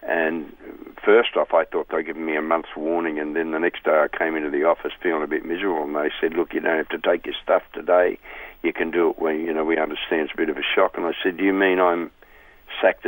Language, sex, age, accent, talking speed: English, male, 60-79, Australian, 280 wpm